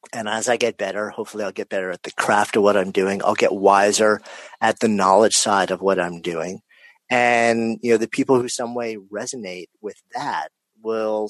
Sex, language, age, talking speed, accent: male, English, 40-59, 205 wpm, American